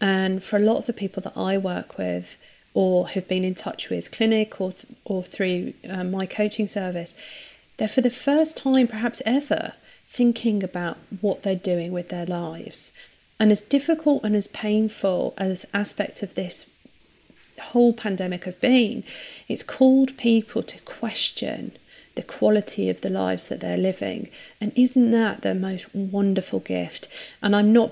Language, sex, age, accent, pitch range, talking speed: English, female, 40-59, British, 185-225 Hz, 170 wpm